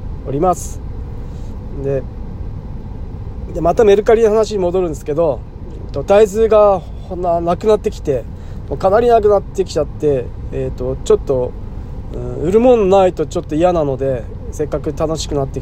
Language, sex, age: Japanese, male, 20-39